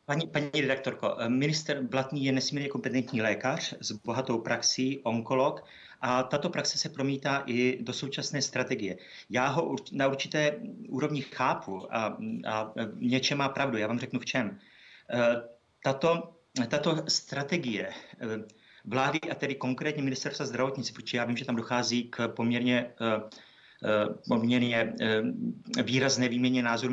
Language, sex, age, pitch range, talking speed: Czech, male, 30-49, 120-145 Hz, 130 wpm